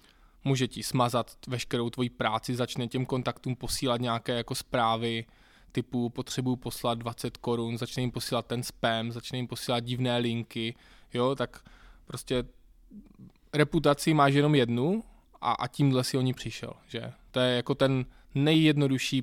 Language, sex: Czech, male